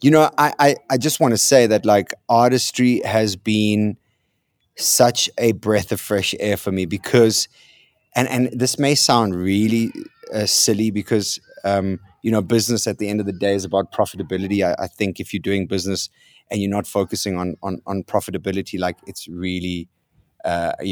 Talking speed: 185 wpm